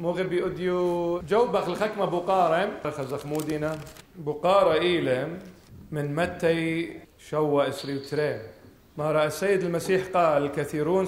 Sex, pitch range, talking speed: male, 145-175 Hz, 90 wpm